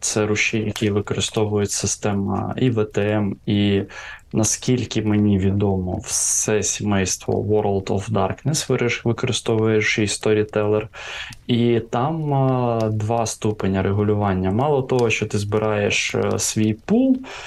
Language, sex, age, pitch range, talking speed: Ukrainian, male, 20-39, 105-115 Hz, 110 wpm